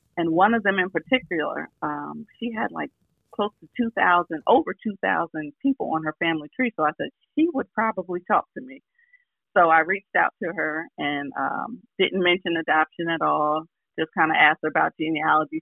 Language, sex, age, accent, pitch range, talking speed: English, female, 40-59, American, 155-200 Hz, 190 wpm